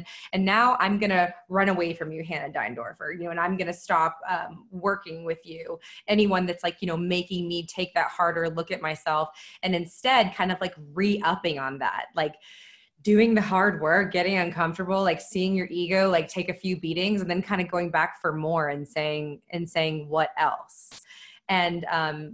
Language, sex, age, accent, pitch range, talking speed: English, female, 20-39, American, 170-195 Hz, 200 wpm